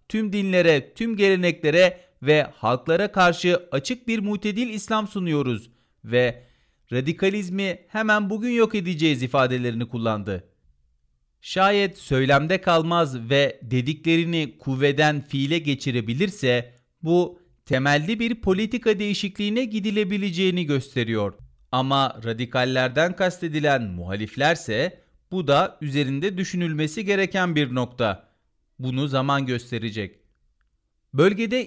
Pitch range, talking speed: 130-190 Hz, 95 wpm